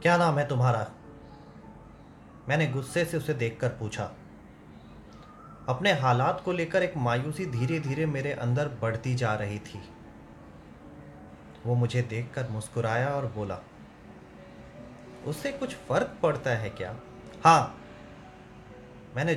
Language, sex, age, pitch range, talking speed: Hindi, male, 30-49, 120-165 Hz, 120 wpm